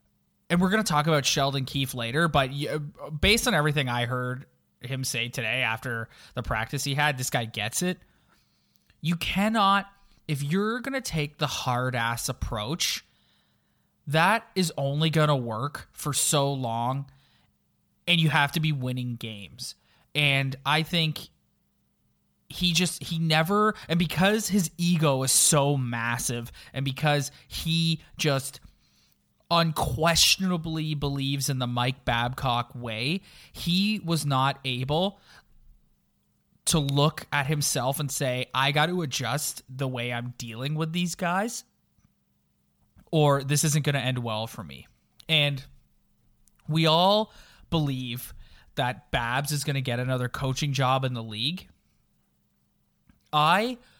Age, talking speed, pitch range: 20-39, 140 wpm, 125-160 Hz